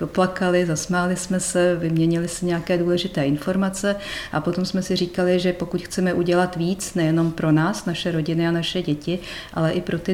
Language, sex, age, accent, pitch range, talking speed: Czech, female, 50-69, native, 155-175 Hz, 185 wpm